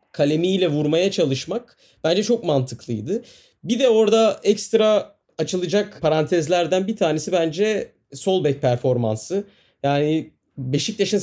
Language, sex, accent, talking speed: Turkish, male, native, 105 wpm